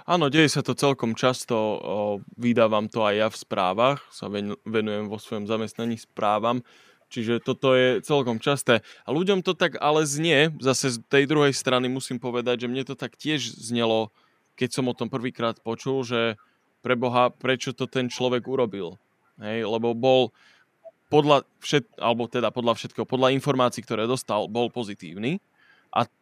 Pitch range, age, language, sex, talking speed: 115-130 Hz, 20-39, Slovak, male, 165 wpm